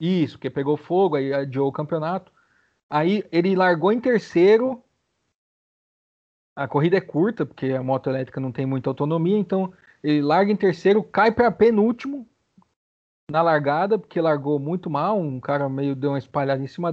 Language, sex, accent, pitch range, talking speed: Portuguese, male, Brazilian, 145-185 Hz, 165 wpm